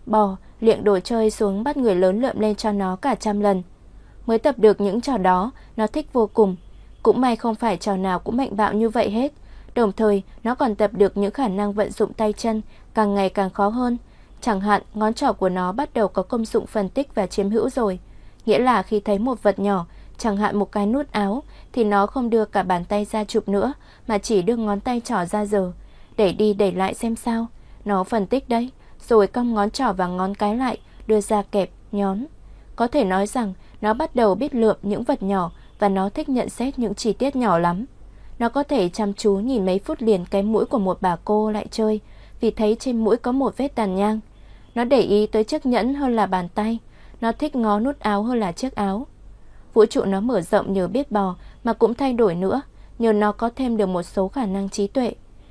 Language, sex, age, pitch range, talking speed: Vietnamese, female, 20-39, 200-235 Hz, 235 wpm